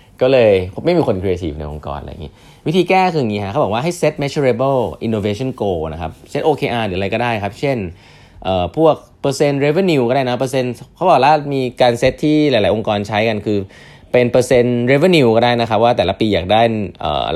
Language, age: Thai, 20-39